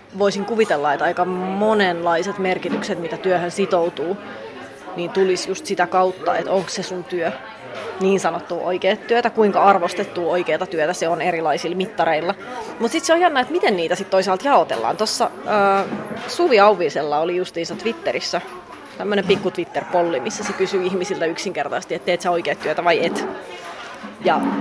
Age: 30-49